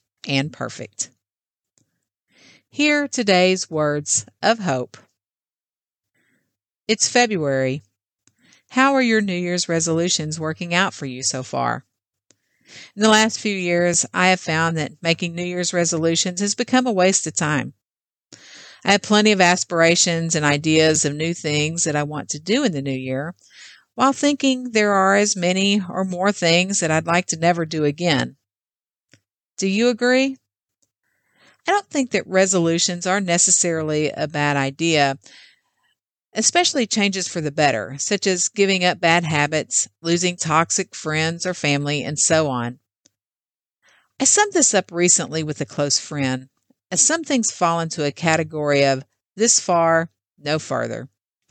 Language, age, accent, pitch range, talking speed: English, 50-69, American, 145-190 Hz, 150 wpm